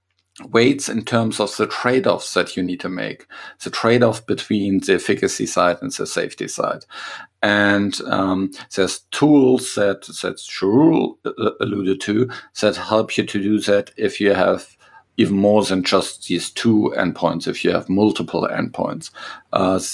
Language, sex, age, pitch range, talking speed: English, male, 50-69, 95-115 Hz, 155 wpm